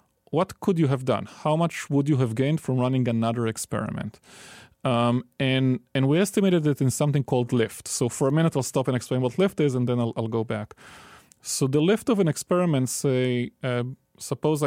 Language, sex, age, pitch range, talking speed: English, male, 30-49, 125-155 Hz, 210 wpm